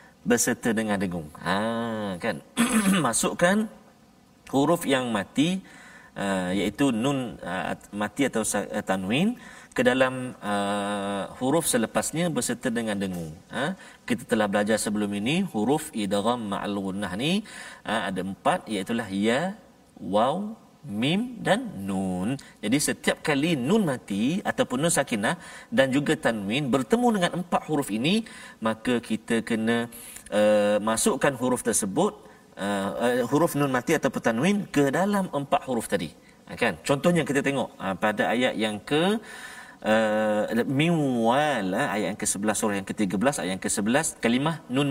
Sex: male